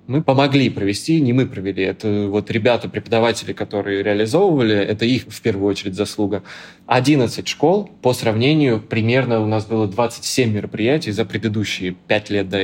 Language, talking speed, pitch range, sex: Russian, 150 wpm, 105-130 Hz, male